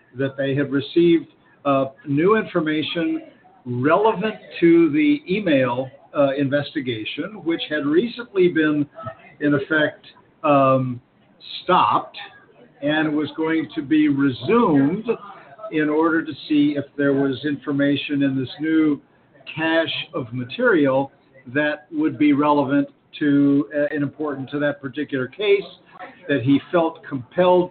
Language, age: English, 50-69